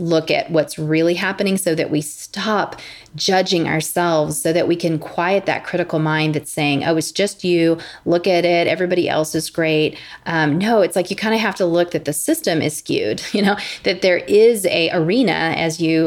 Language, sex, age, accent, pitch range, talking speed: English, female, 30-49, American, 155-185 Hz, 210 wpm